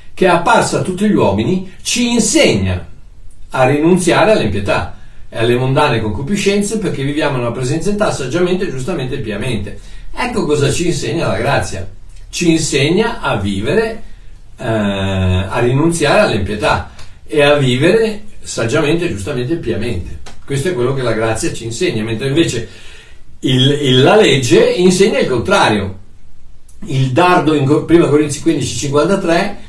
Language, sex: Italian, male